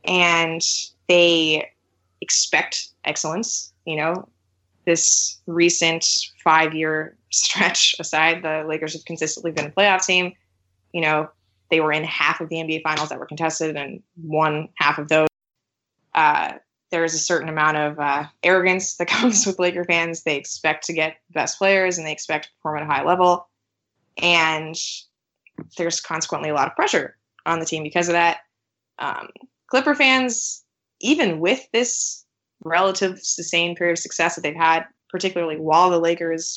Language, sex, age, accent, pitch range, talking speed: English, female, 20-39, American, 155-180 Hz, 160 wpm